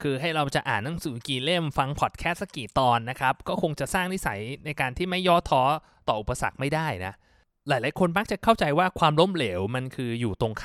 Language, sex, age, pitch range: Thai, male, 20-39, 120-165 Hz